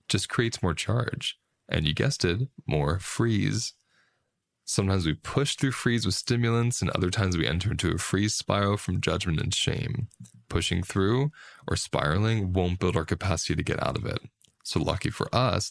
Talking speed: 180 wpm